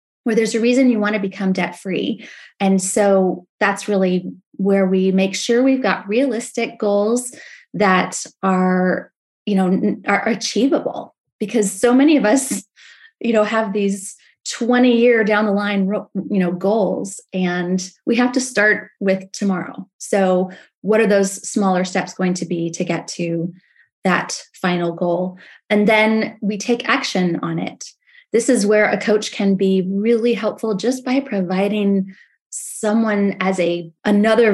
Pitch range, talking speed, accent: 190-225 Hz, 155 wpm, American